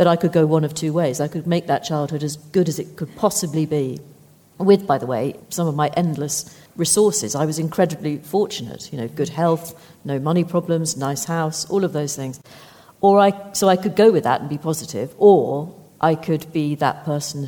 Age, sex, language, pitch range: 40-59, female, English, 140-175 Hz